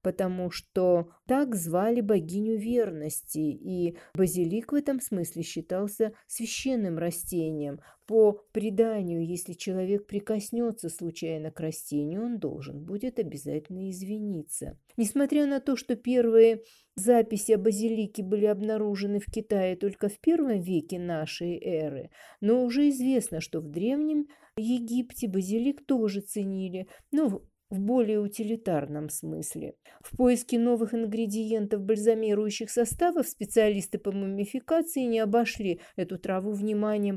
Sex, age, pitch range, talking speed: female, 40-59, 180-230 Hz, 120 wpm